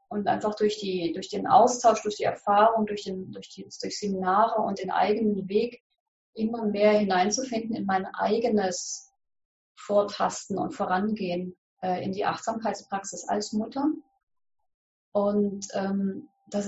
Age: 30-49